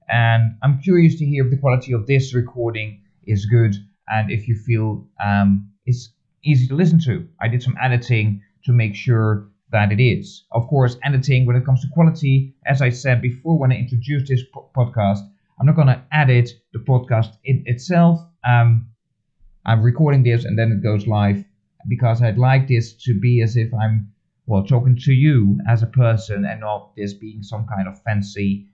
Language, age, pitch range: English, 30-49, 115-150 Hz